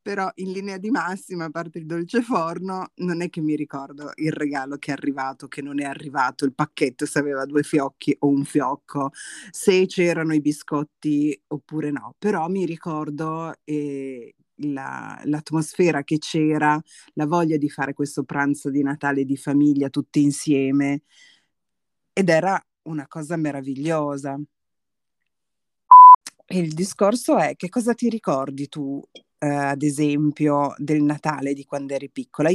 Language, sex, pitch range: Italian, female, 140-165 Hz